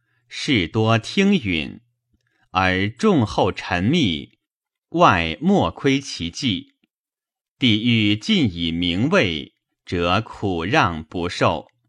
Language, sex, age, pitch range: Chinese, male, 30-49, 90-125 Hz